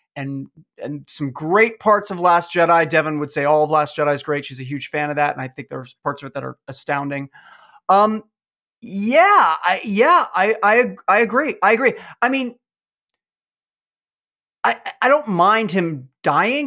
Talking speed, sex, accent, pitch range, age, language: 185 wpm, male, American, 150-205 Hz, 30-49, English